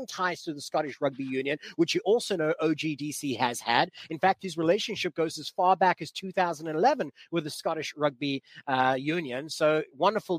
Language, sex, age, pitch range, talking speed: English, male, 30-49, 155-195 Hz, 180 wpm